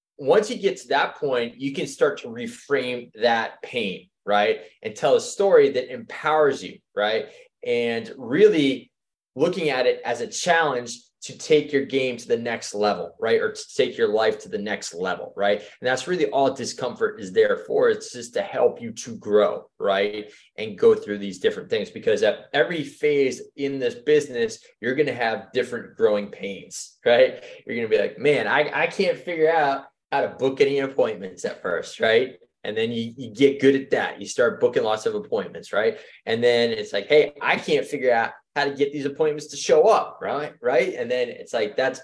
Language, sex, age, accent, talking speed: English, male, 20-39, American, 205 wpm